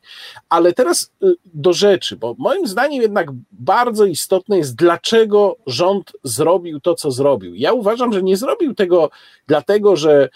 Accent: native